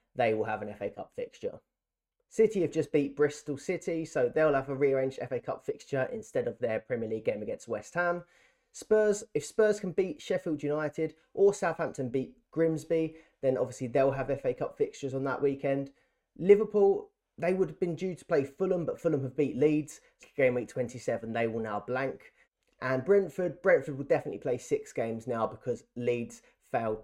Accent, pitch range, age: British, 130-190 Hz, 20-39